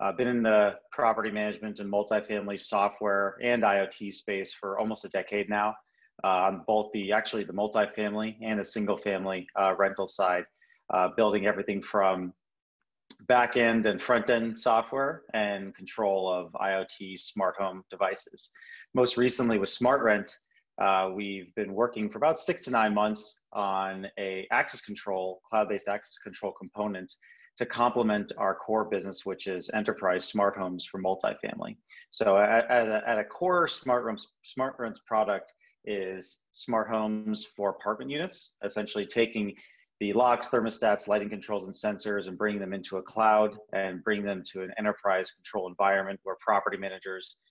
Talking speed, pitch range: 155 wpm, 95-110 Hz